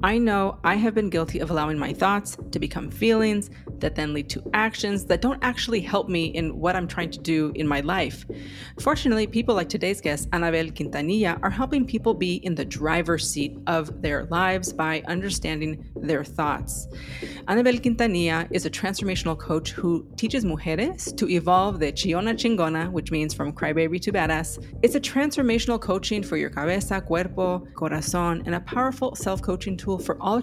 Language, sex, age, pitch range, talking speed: English, female, 30-49, 160-205 Hz, 180 wpm